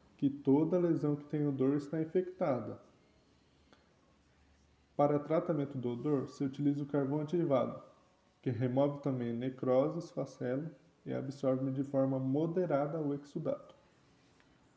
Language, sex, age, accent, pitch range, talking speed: Portuguese, male, 20-39, Brazilian, 140-170 Hz, 120 wpm